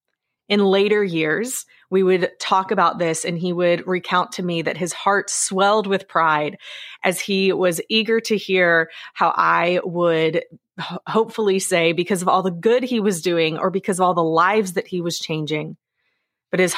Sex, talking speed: female, 180 wpm